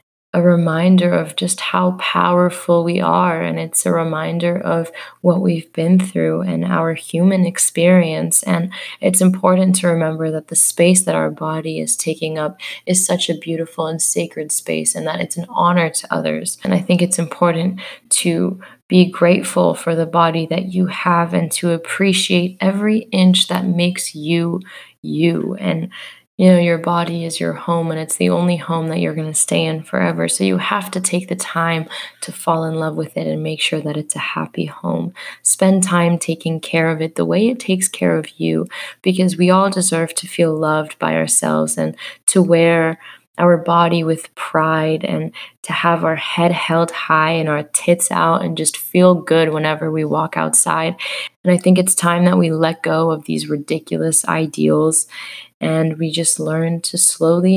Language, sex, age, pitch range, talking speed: English, female, 20-39, 155-180 Hz, 185 wpm